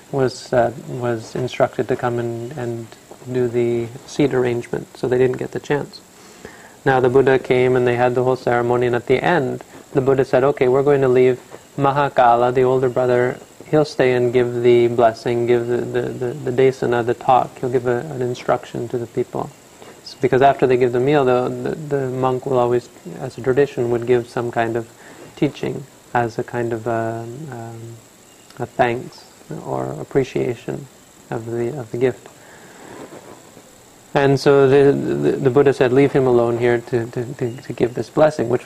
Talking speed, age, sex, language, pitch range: 190 wpm, 30-49, male, English, 120-130 Hz